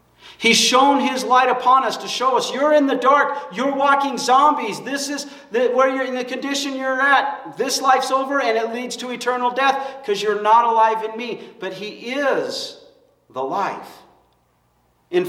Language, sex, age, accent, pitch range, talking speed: English, male, 50-69, American, 170-265 Hz, 180 wpm